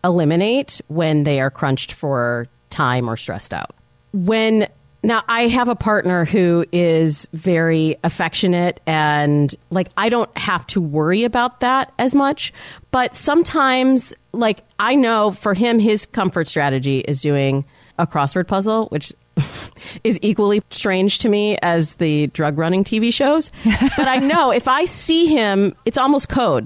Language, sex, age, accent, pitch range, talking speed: English, female, 30-49, American, 155-220 Hz, 155 wpm